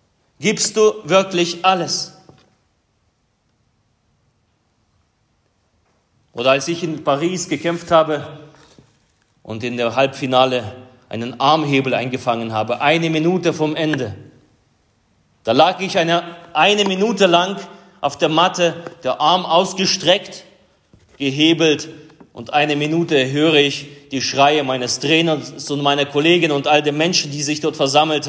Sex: male